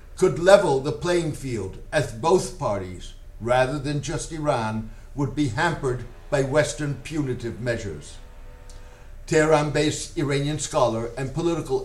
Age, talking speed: 60-79, 120 wpm